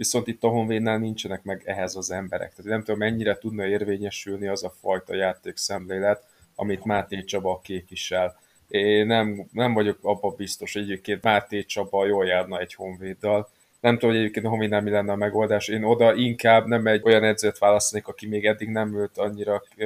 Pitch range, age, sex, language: 100-115 Hz, 20-39, male, Hungarian